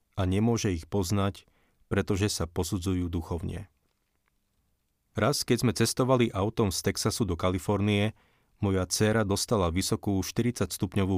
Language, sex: Slovak, male